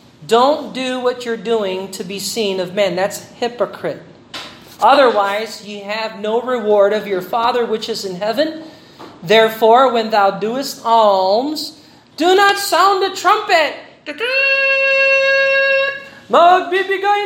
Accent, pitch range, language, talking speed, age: American, 225-360 Hz, Filipino, 120 wpm, 40-59